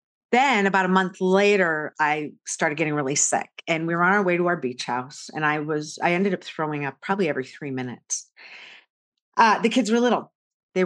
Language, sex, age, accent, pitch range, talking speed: English, female, 40-59, American, 145-185 Hz, 210 wpm